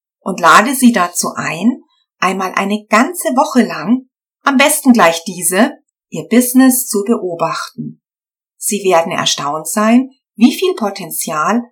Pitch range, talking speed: 170-245 Hz, 130 wpm